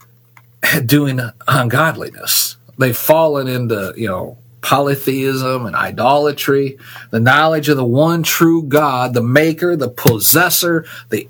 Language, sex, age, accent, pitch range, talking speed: English, male, 50-69, American, 120-155 Hz, 115 wpm